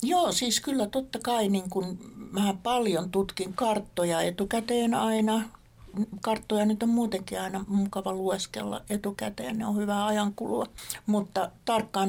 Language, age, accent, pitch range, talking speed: Finnish, 60-79, native, 190-215 Hz, 135 wpm